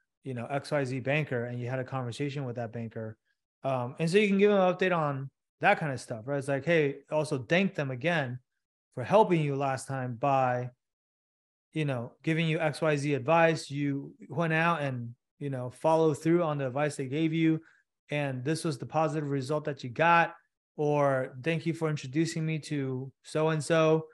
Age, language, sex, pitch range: 30-49, English, male, 135-160 Hz